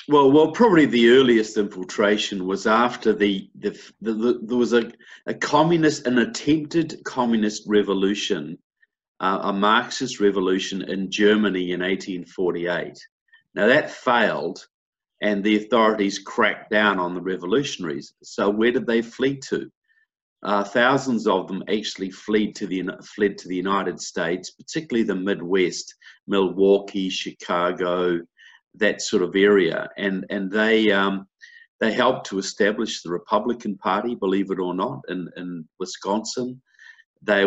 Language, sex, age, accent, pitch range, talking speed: English, male, 50-69, Australian, 95-115 Hz, 140 wpm